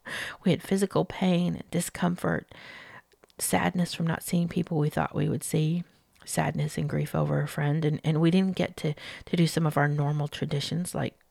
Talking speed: 185 wpm